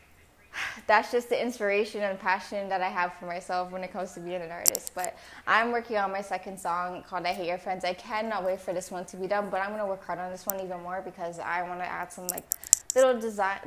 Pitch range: 180-215 Hz